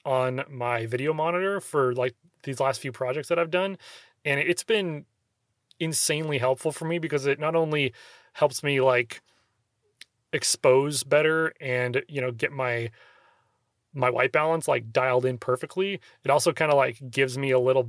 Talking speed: 170 wpm